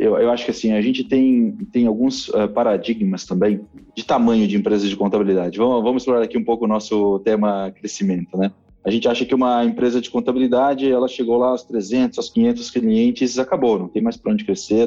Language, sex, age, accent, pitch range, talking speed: Portuguese, male, 20-39, Brazilian, 105-135 Hz, 210 wpm